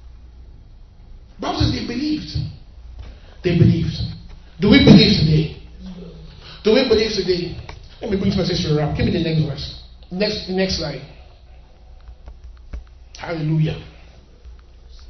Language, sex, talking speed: English, male, 115 wpm